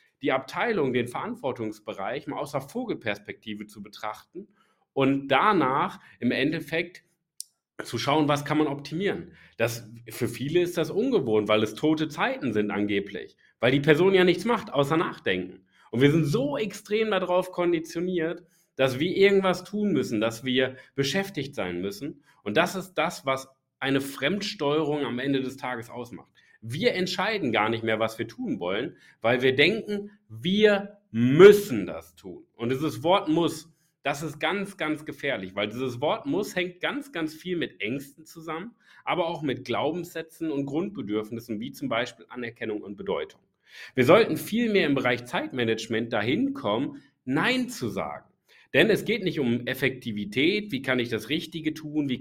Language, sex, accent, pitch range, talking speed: German, male, German, 120-170 Hz, 165 wpm